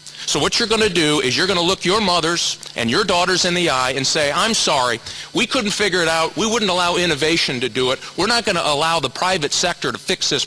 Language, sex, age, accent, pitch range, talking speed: English, male, 40-59, American, 130-165 Hz, 265 wpm